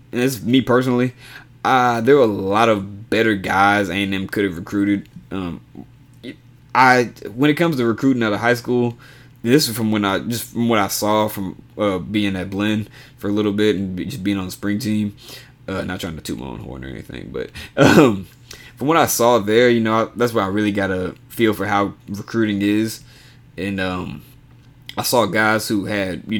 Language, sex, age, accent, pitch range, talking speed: English, male, 20-39, American, 100-125 Hz, 215 wpm